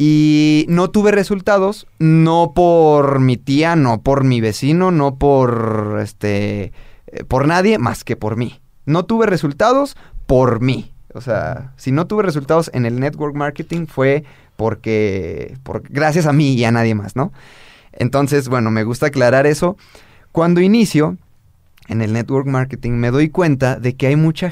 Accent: Mexican